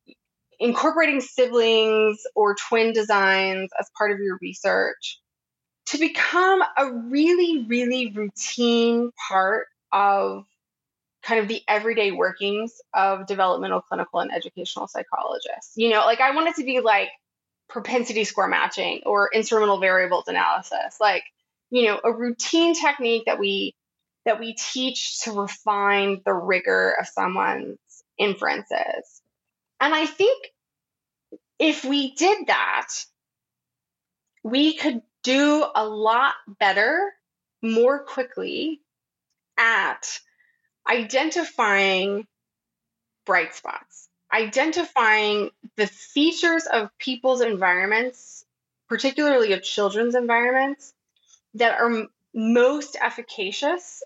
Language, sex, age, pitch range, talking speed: English, female, 20-39, 205-270 Hz, 110 wpm